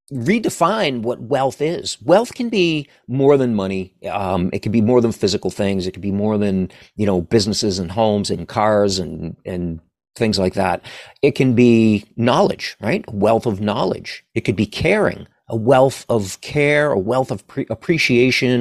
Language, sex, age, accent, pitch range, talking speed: English, male, 40-59, American, 105-145 Hz, 185 wpm